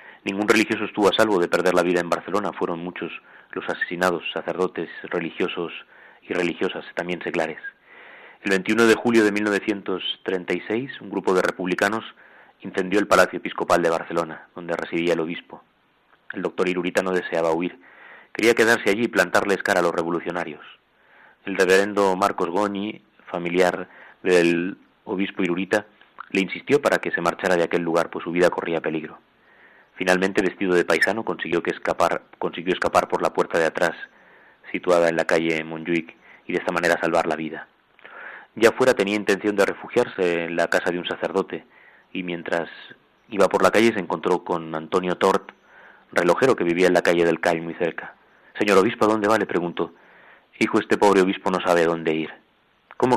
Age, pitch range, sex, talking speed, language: 30-49, 85-100 Hz, male, 175 wpm, Spanish